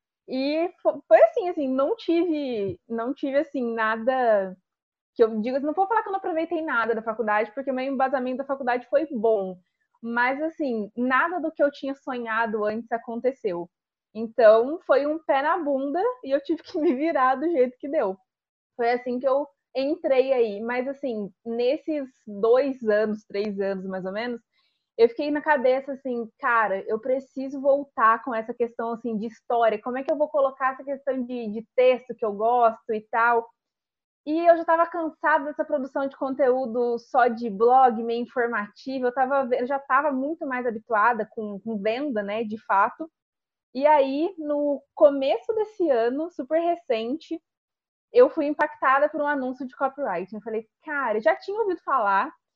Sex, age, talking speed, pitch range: female, 20-39, 180 wpm, 230-300 Hz